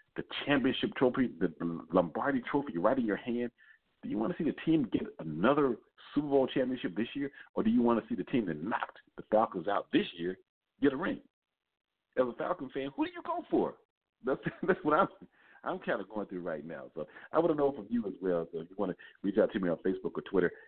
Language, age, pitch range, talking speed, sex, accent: English, 50-69, 90-125 Hz, 245 wpm, male, American